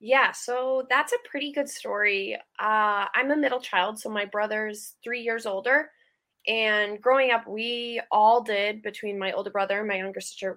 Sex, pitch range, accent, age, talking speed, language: female, 175-215 Hz, American, 20-39, 180 wpm, English